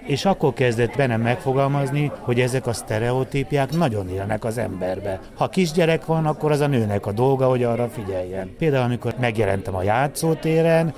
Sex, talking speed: male, 165 wpm